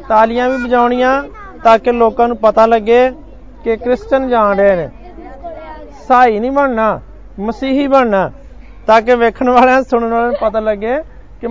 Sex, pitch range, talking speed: male, 225-260 Hz, 130 wpm